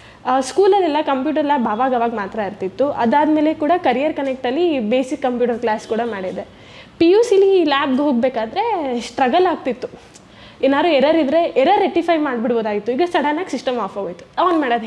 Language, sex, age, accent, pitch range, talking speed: Kannada, female, 10-29, native, 240-310 Hz, 145 wpm